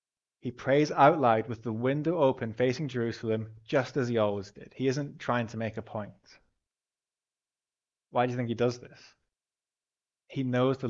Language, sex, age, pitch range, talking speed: English, male, 20-39, 110-135 Hz, 175 wpm